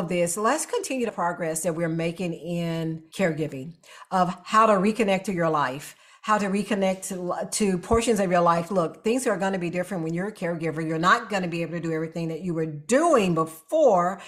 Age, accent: 50-69, American